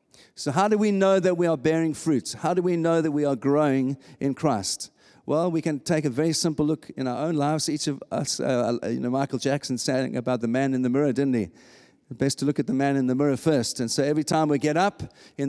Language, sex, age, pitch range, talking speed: English, male, 50-69, 135-175 Hz, 260 wpm